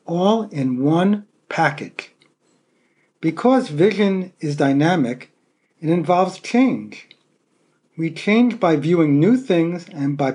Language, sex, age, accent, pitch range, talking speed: English, male, 50-69, American, 145-205 Hz, 110 wpm